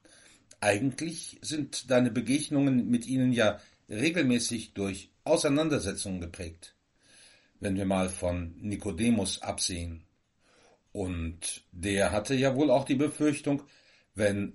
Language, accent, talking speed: German, German, 105 wpm